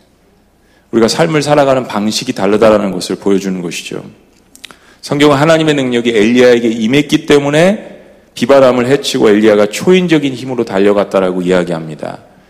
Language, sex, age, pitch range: Korean, male, 40-59, 115-155 Hz